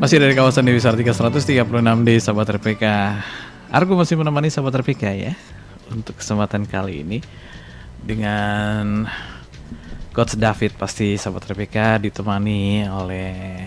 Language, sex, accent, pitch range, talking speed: Indonesian, male, native, 100-120 Hz, 115 wpm